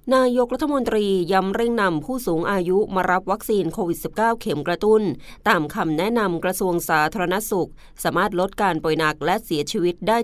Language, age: Thai, 20-39